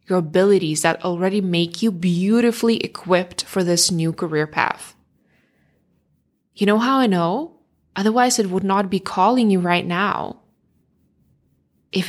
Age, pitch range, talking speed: 20-39, 175-210 Hz, 140 wpm